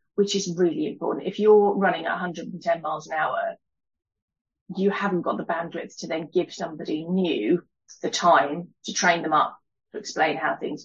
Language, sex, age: English, female, 30-49